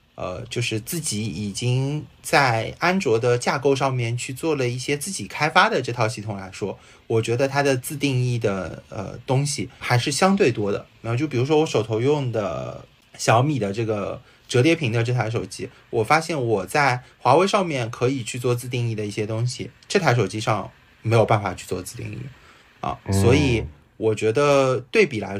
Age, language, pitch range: 20-39, Chinese, 110-140 Hz